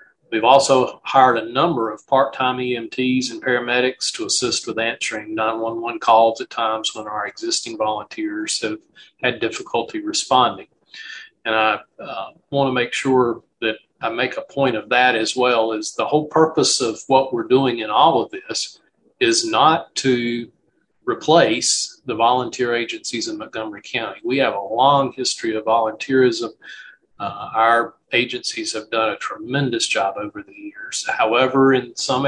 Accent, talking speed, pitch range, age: American, 155 wpm, 115-170 Hz, 40-59